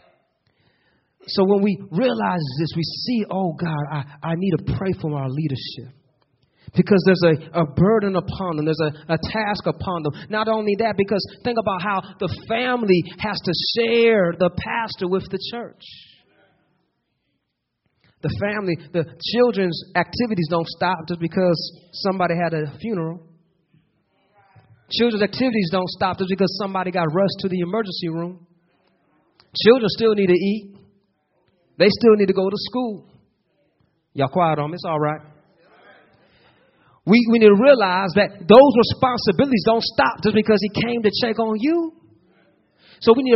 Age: 40-59